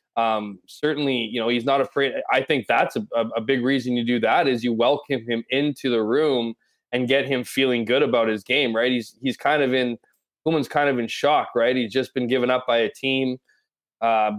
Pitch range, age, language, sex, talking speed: 115-135 Hz, 20-39, English, male, 220 wpm